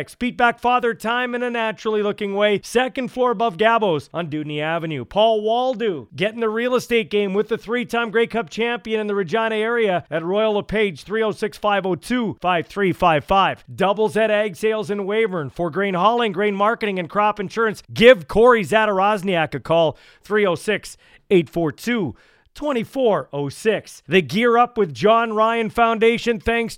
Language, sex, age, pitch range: English, male, 40-59, 185-230 Hz